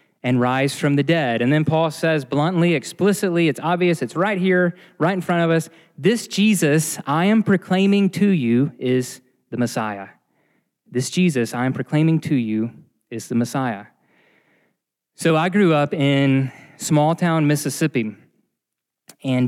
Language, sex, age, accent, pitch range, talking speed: English, male, 20-39, American, 135-180 Hz, 155 wpm